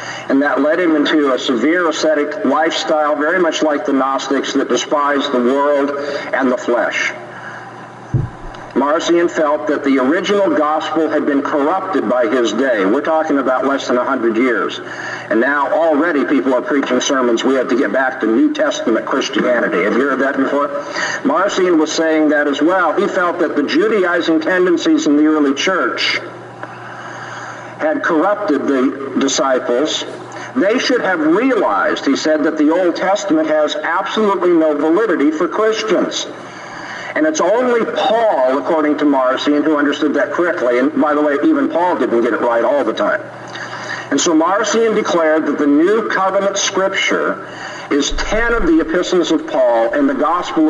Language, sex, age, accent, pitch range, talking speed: English, male, 50-69, American, 145-205 Hz, 165 wpm